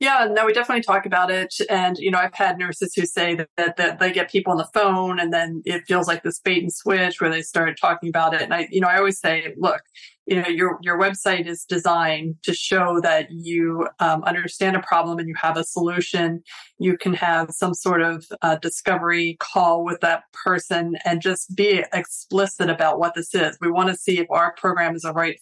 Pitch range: 165-185 Hz